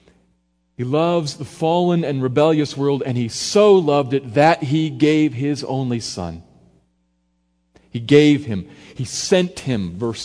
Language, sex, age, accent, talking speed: English, male, 40-59, American, 145 wpm